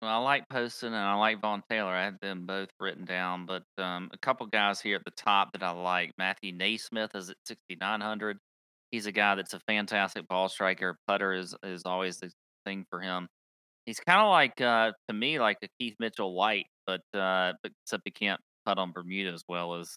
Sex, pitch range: male, 95-120 Hz